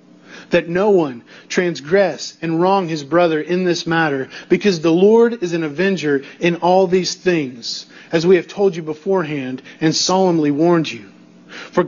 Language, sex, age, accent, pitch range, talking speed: English, male, 40-59, American, 165-215 Hz, 160 wpm